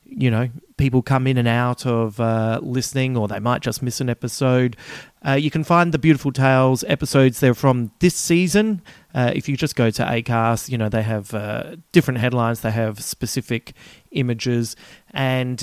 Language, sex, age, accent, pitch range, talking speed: English, male, 30-49, Australian, 115-145 Hz, 185 wpm